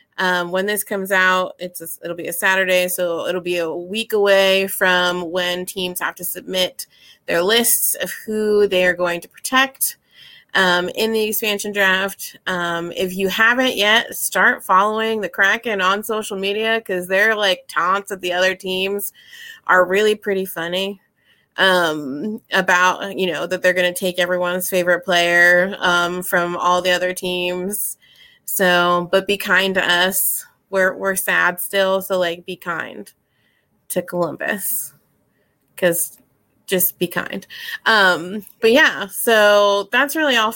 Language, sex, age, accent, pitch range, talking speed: English, female, 20-39, American, 180-220 Hz, 155 wpm